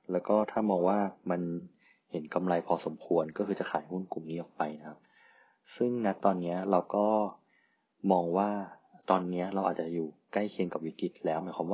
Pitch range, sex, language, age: 85-100 Hz, male, Thai, 20-39